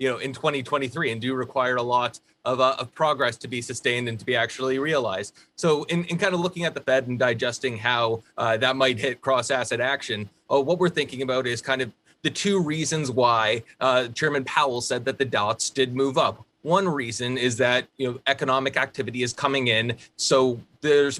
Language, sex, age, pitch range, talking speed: English, male, 20-39, 125-150 Hz, 210 wpm